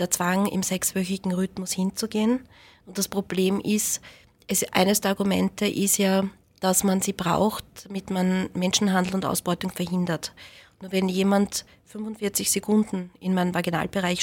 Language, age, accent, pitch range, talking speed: German, 20-39, Austrian, 180-200 Hz, 140 wpm